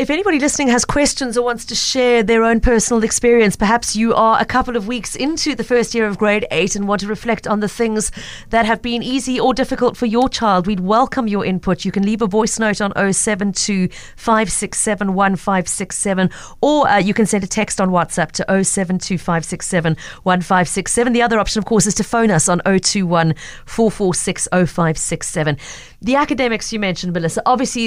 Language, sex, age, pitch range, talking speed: English, female, 40-59, 180-230 Hz, 180 wpm